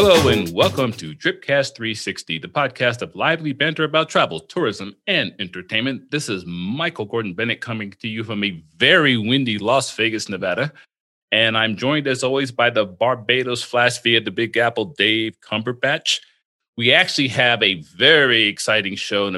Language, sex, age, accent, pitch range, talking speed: English, male, 40-59, American, 105-130 Hz, 175 wpm